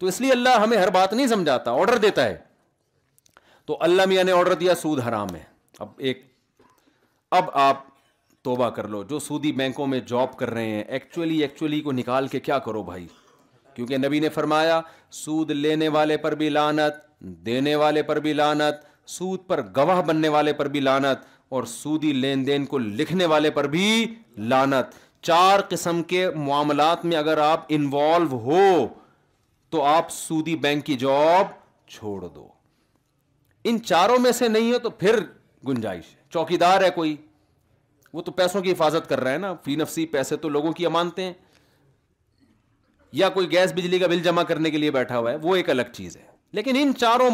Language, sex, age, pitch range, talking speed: Urdu, male, 40-59, 135-180 Hz, 180 wpm